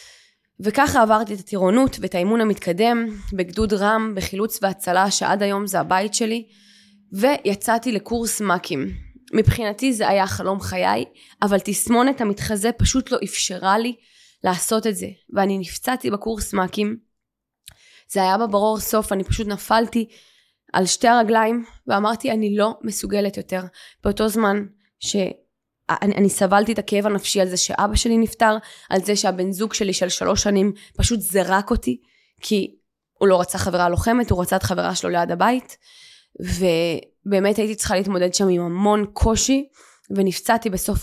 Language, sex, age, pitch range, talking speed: Hebrew, female, 20-39, 195-225 Hz, 150 wpm